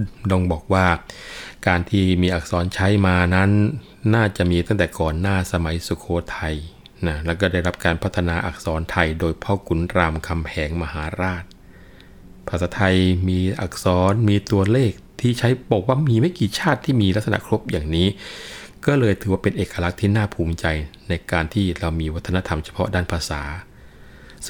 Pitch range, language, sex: 85-100 Hz, Thai, male